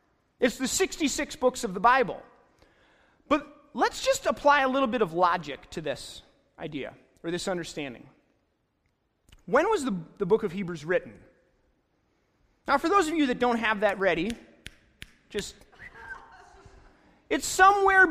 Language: English